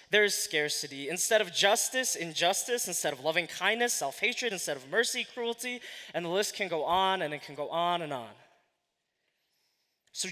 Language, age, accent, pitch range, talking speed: English, 20-39, American, 165-220 Hz, 175 wpm